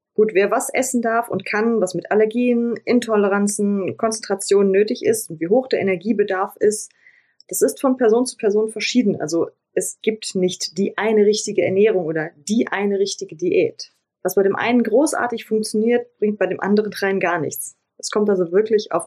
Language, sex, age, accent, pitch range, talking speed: German, female, 20-39, German, 185-230 Hz, 185 wpm